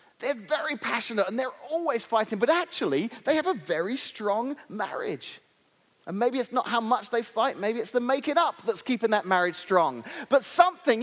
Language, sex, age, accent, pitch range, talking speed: English, male, 30-49, British, 165-240 Hz, 195 wpm